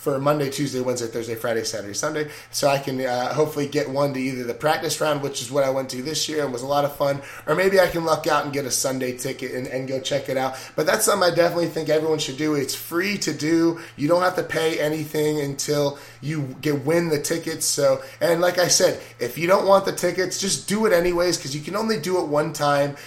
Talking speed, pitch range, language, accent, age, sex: 260 wpm, 135-165 Hz, English, American, 20-39, male